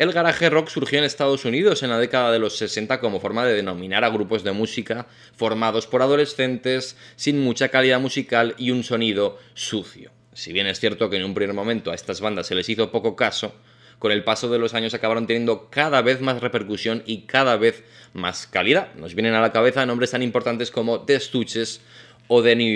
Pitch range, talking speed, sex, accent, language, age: 110-130 Hz, 210 wpm, male, Spanish, Spanish, 20-39